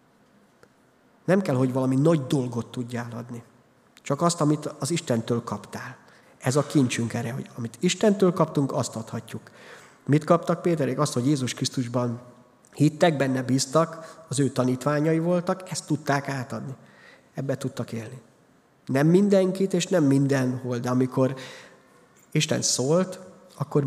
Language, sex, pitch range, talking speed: Hungarian, male, 125-150 Hz, 135 wpm